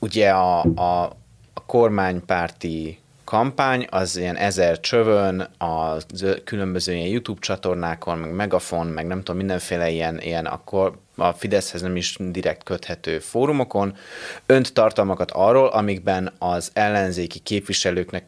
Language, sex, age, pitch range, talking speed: Hungarian, male, 30-49, 85-100 Hz, 125 wpm